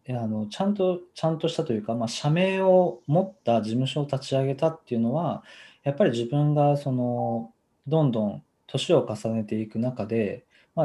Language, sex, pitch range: Japanese, male, 110-160 Hz